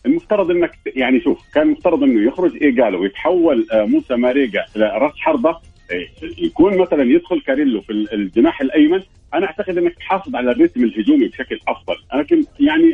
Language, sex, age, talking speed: English, male, 50-69, 155 wpm